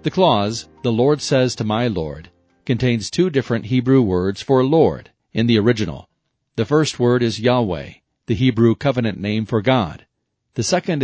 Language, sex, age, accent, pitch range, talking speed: English, male, 40-59, American, 105-130 Hz, 170 wpm